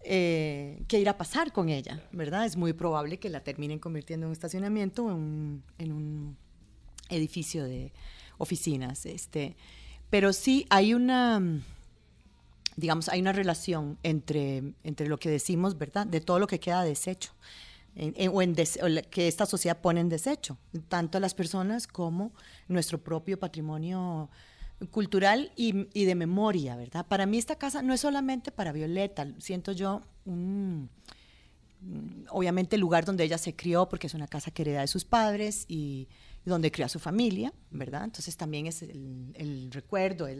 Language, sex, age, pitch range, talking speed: Spanish, female, 40-59, 155-200 Hz, 170 wpm